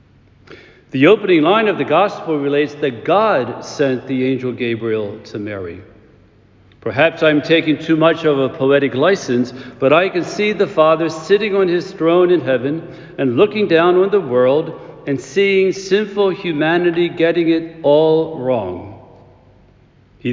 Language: English